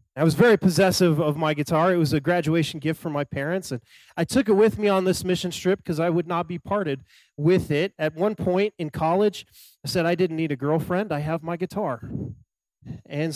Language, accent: English, American